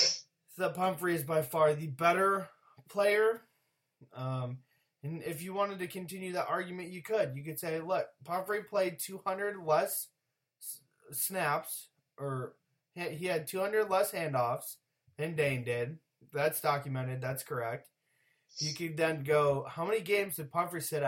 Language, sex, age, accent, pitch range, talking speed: English, male, 20-39, American, 145-185 Hz, 145 wpm